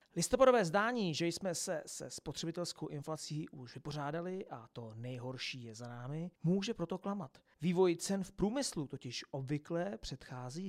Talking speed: 145 wpm